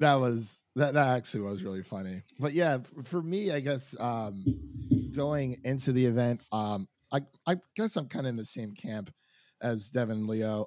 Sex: male